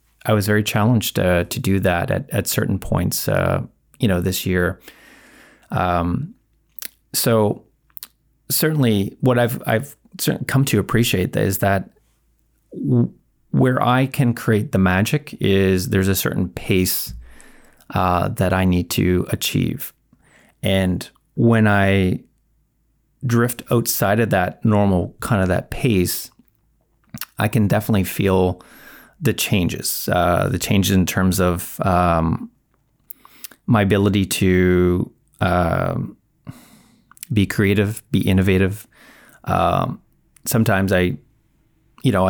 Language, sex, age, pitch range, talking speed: English, male, 30-49, 95-120 Hz, 120 wpm